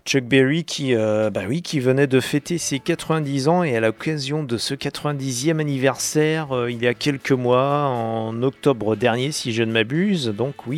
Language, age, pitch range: French, 40-59, 115-145 Hz